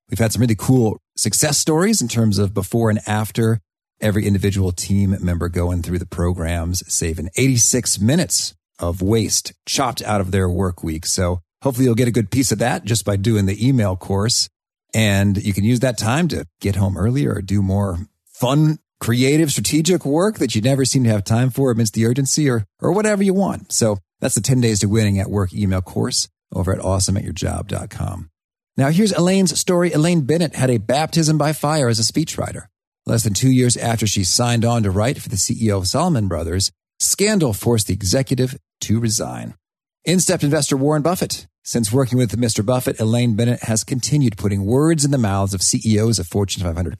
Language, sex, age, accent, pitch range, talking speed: English, male, 40-59, American, 95-135 Hz, 200 wpm